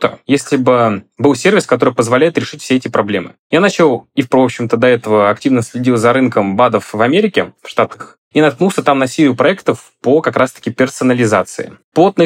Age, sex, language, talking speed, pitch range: 20-39, male, Russian, 180 wpm, 115-145 Hz